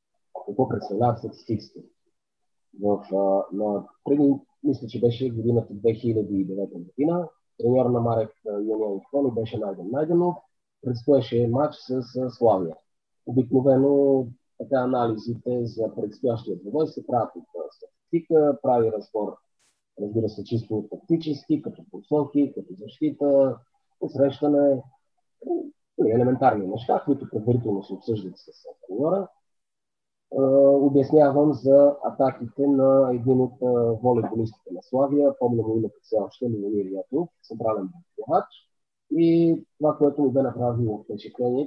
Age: 30-49